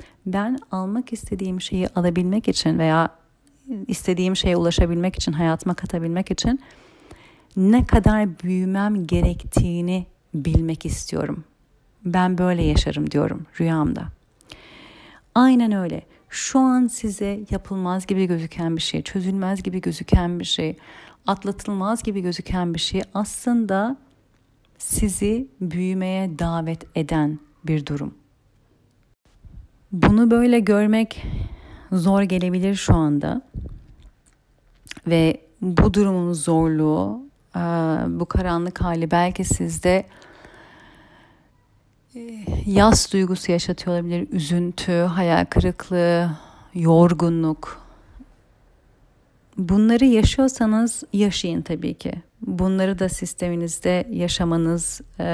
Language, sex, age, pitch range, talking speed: Turkish, female, 40-59, 165-200 Hz, 90 wpm